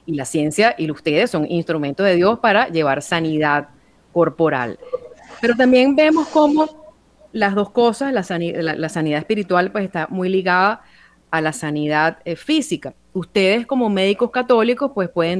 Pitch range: 170-225 Hz